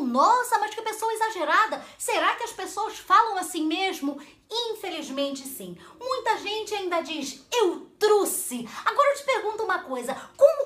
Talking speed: 150 wpm